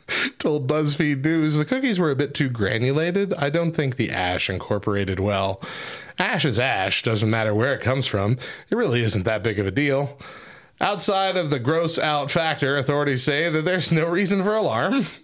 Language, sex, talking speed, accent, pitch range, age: English, male, 185 wpm, American, 105-165 Hz, 30-49